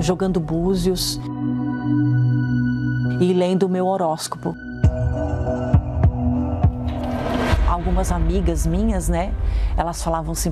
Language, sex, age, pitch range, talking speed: Portuguese, female, 40-59, 165-200 Hz, 80 wpm